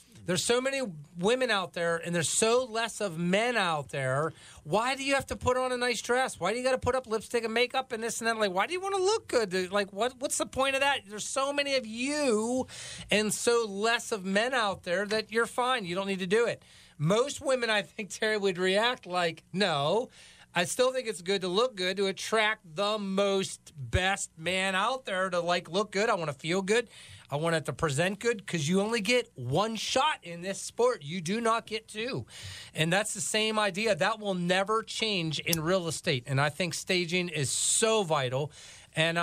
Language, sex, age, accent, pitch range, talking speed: English, male, 30-49, American, 175-230 Hz, 230 wpm